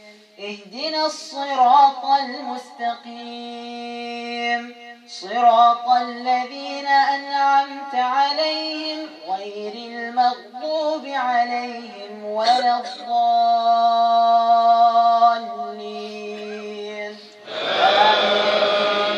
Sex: female